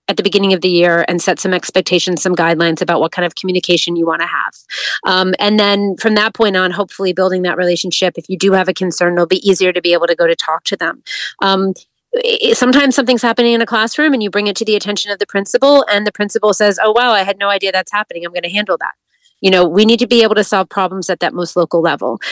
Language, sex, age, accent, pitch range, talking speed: English, female, 30-49, American, 175-210 Hz, 265 wpm